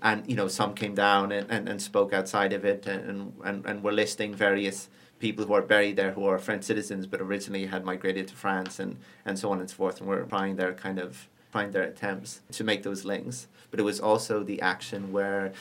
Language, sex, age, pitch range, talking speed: English, male, 30-49, 95-105 Hz, 235 wpm